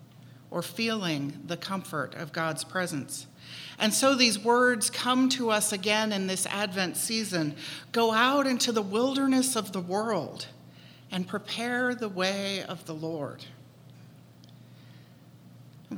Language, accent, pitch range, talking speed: English, American, 175-220 Hz, 130 wpm